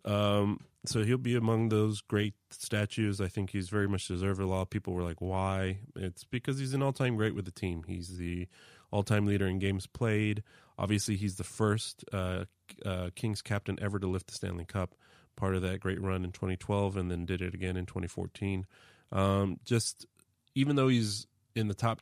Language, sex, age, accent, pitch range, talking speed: English, male, 30-49, American, 95-110 Hz, 195 wpm